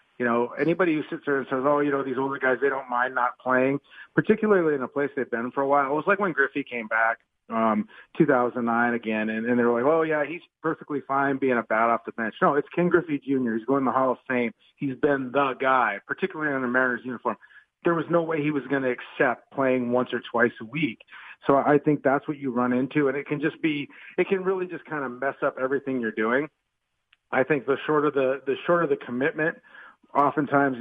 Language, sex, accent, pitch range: English, male, American, 125-155 Hz